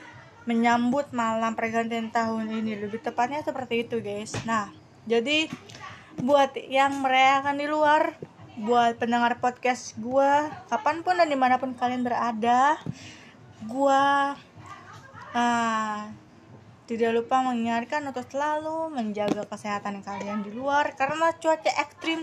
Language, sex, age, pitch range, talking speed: Indonesian, female, 20-39, 215-260 Hz, 110 wpm